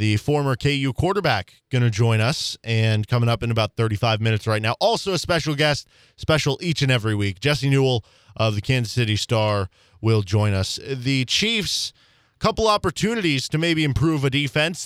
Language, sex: English, male